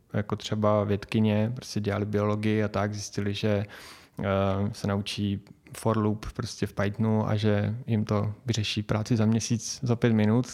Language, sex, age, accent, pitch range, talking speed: Czech, male, 20-39, native, 105-120 Hz, 155 wpm